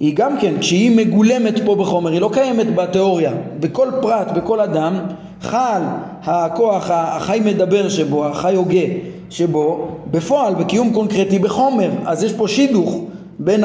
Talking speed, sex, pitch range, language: 140 wpm, male, 175-215 Hz, Hebrew